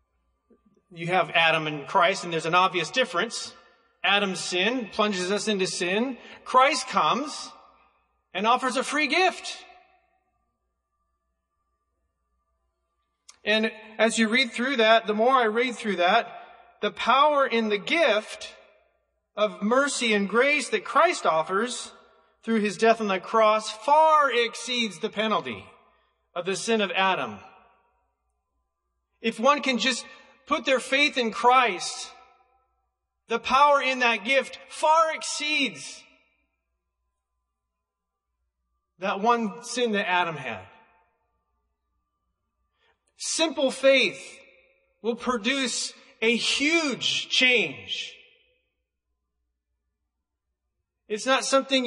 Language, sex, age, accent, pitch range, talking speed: English, male, 40-59, American, 180-265 Hz, 110 wpm